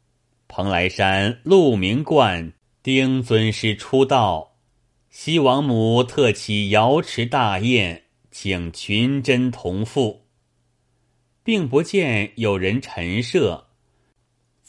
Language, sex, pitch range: Chinese, male, 100-130 Hz